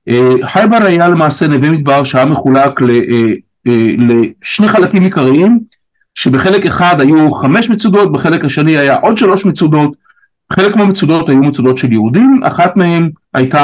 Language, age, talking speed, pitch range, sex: Hebrew, 50-69, 130 wpm, 130-185 Hz, male